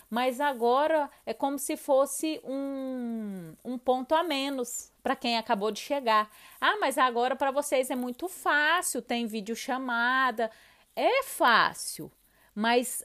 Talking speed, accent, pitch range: 135 wpm, Brazilian, 230-295 Hz